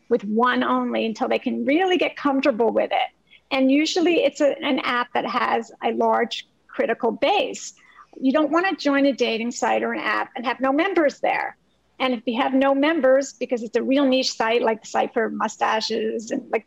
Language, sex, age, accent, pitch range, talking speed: English, female, 50-69, American, 240-280 Hz, 205 wpm